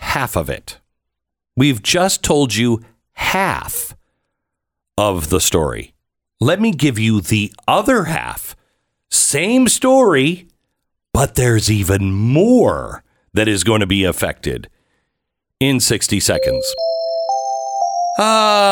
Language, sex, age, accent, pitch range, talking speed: English, male, 50-69, American, 90-120 Hz, 110 wpm